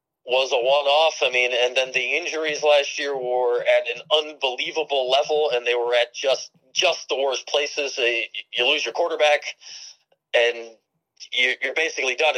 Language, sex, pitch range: English, male, 125-160 Hz